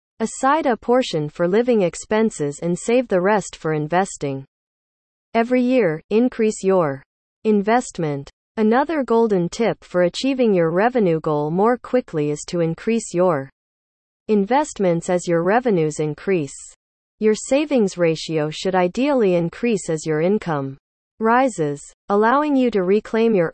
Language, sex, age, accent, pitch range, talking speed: English, female, 40-59, American, 160-230 Hz, 130 wpm